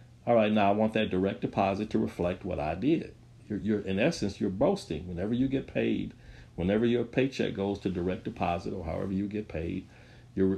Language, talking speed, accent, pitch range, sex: English, 200 wpm, American, 95-115 Hz, male